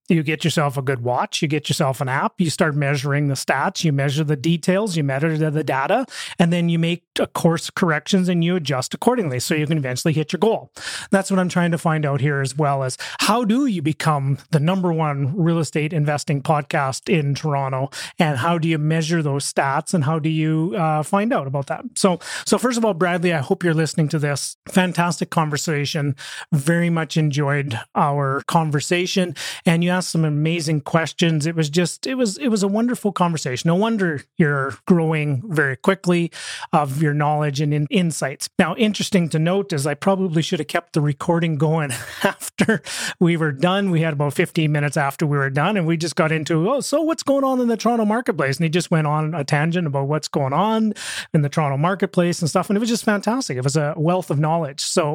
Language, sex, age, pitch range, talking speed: English, male, 30-49, 150-180 Hz, 215 wpm